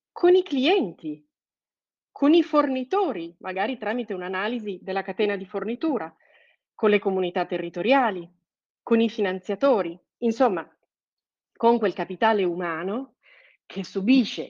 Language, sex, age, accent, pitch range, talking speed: Italian, female, 40-59, native, 185-245 Hz, 110 wpm